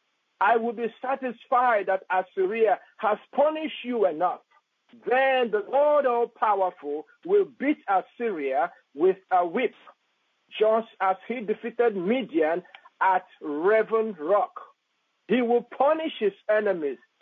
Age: 50-69